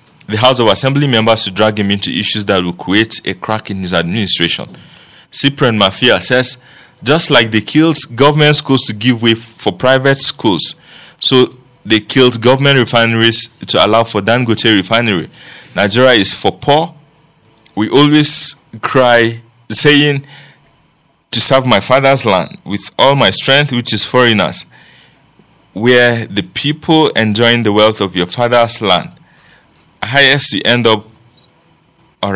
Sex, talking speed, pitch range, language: male, 145 wpm, 105-135 Hz, English